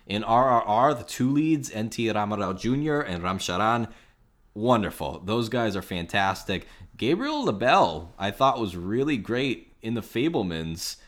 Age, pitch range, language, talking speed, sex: 20-39, 85-105 Hz, English, 135 wpm, male